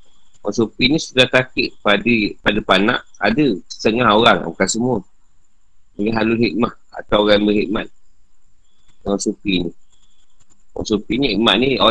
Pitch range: 100-130 Hz